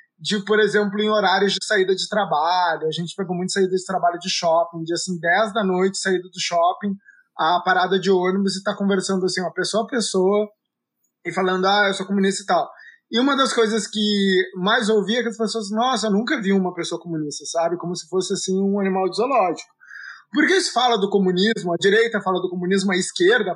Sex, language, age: male, Portuguese, 20-39